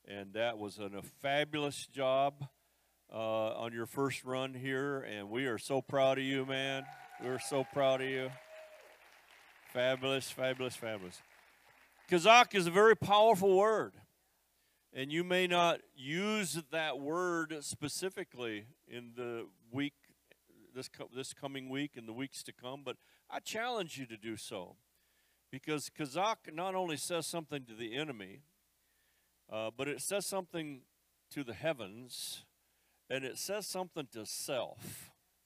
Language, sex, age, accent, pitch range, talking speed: English, male, 50-69, American, 125-165 Hz, 145 wpm